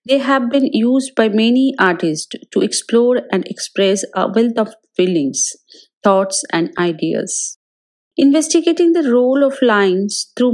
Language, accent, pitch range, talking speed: English, Indian, 190-265 Hz, 135 wpm